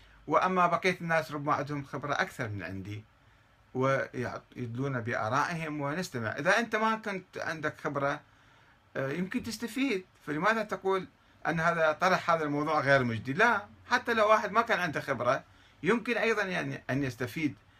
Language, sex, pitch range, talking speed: Arabic, male, 110-155 Hz, 140 wpm